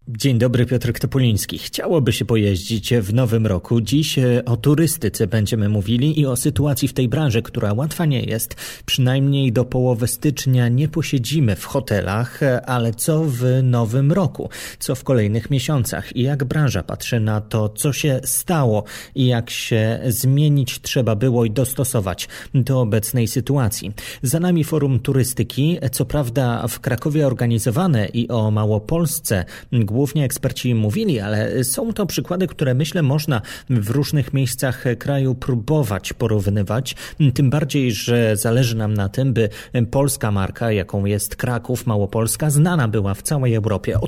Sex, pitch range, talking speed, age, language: male, 115-140 Hz, 150 wpm, 30-49, Polish